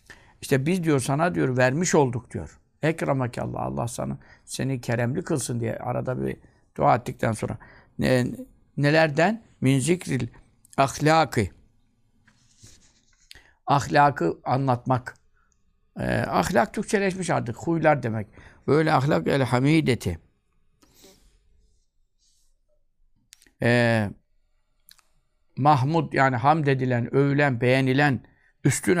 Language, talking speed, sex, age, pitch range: Turkish, 95 wpm, male, 60-79, 115-160 Hz